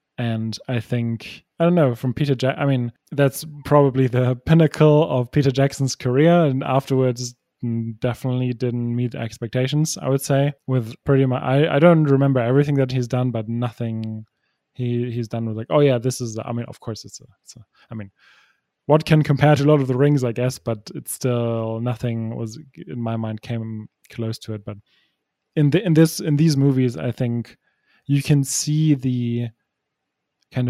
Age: 20-39